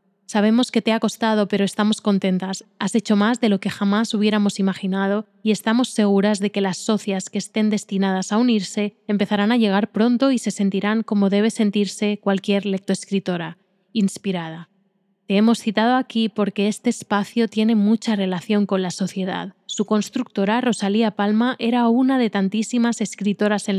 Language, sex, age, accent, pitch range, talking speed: Spanish, female, 20-39, Spanish, 195-220 Hz, 165 wpm